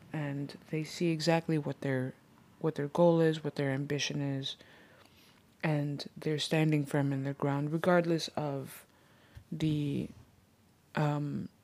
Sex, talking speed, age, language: female, 130 wpm, 20-39, English